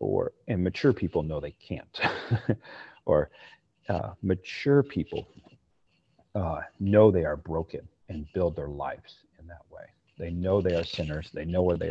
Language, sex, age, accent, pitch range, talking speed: English, male, 40-59, American, 80-100 Hz, 160 wpm